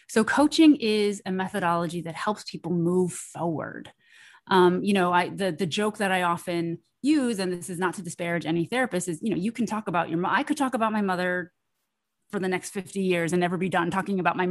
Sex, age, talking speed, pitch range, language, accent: female, 30-49, 230 wpm, 175-220 Hz, English, American